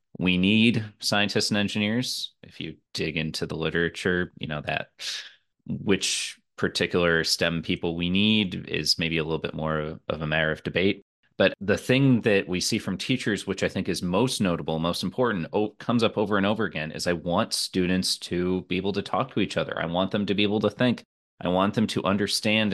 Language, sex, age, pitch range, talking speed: English, male, 30-49, 85-100 Hz, 205 wpm